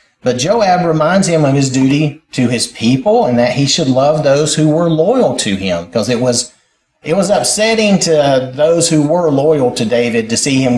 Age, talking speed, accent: 40-59, 205 wpm, American